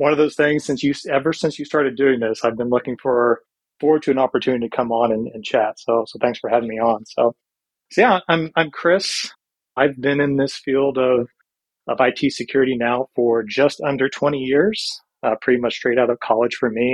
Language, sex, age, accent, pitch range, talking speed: English, male, 30-49, American, 120-140 Hz, 225 wpm